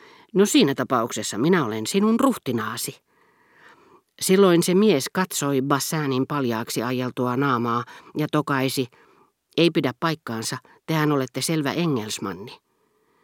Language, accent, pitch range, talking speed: Finnish, native, 125-165 Hz, 110 wpm